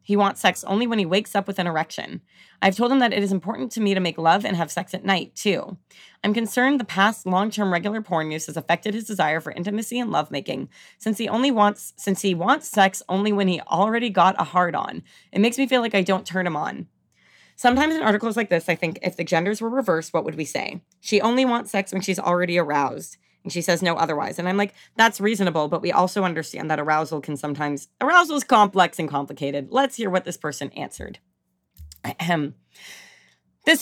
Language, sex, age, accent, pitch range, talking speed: English, female, 30-49, American, 160-215 Hz, 220 wpm